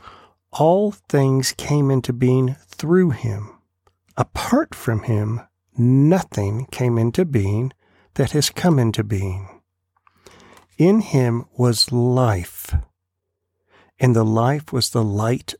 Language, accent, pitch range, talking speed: English, American, 105-145 Hz, 110 wpm